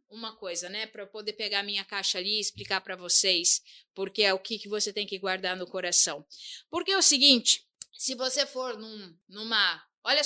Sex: female